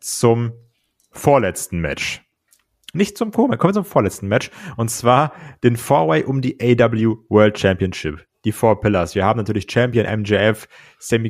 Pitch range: 95-120 Hz